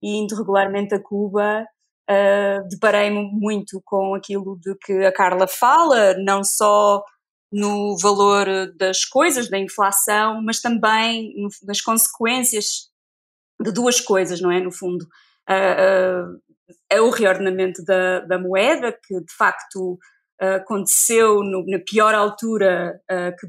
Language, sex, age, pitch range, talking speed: Portuguese, female, 20-39, 185-220 Hz, 120 wpm